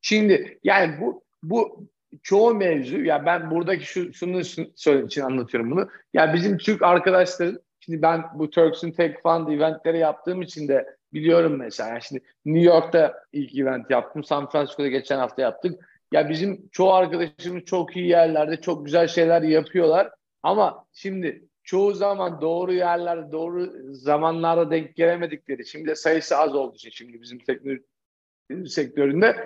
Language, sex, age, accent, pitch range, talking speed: Turkish, male, 50-69, native, 145-175 Hz, 155 wpm